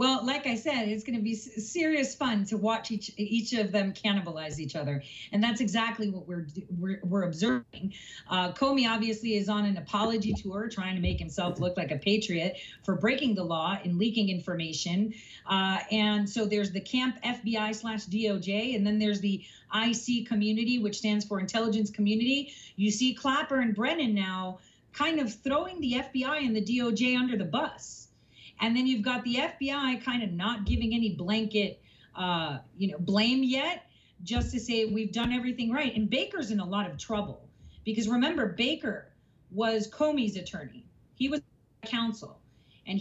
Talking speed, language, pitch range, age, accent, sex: 180 wpm, English, 200-250 Hz, 40-59, American, female